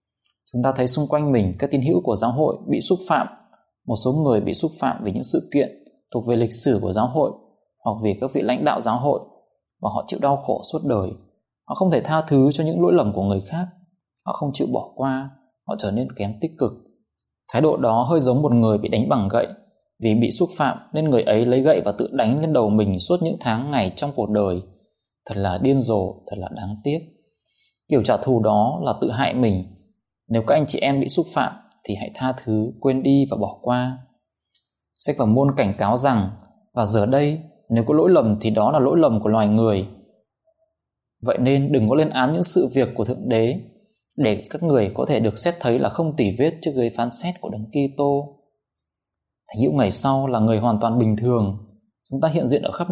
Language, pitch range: Vietnamese, 110-140 Hz